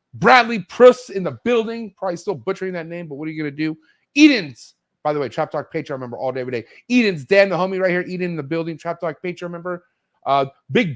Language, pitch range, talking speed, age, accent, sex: English, 125-195 Hz, 240 wpm, 30-49, American, male